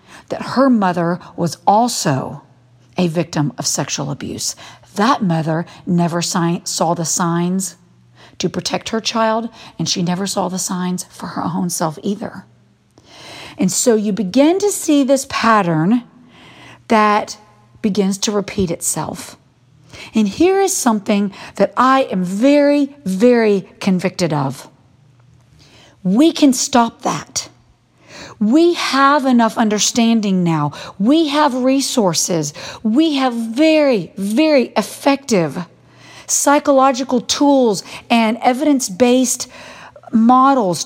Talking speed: 115 wpm